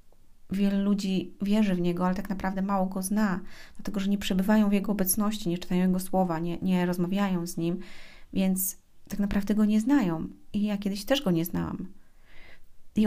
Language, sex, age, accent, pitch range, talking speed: Polish, female, 30-49, native, 180-205 Hz, 190 wpm